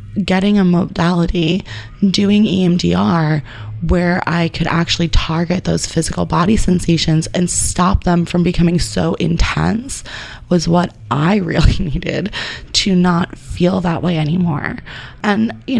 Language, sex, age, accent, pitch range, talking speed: English, female, 20-39, American, 155-185 Hz, 130 wpm